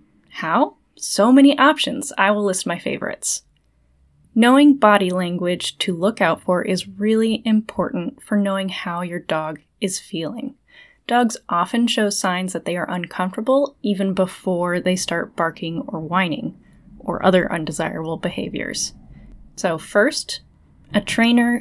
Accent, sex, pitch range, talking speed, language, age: American, female, 175-225 Hz, 135 wpm, English, 10-29